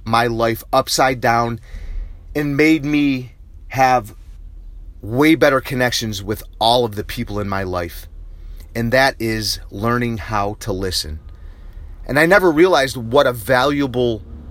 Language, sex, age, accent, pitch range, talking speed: English, male, 30-49, American, 80-125 Hz, 135 wpm